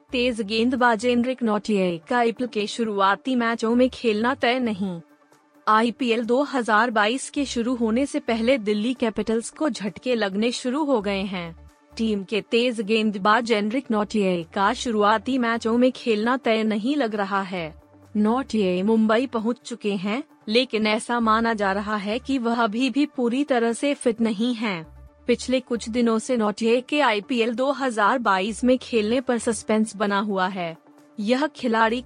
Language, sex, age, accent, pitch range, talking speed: Hindi, female, 30-49, native, 210-250 Hz, 155 wpm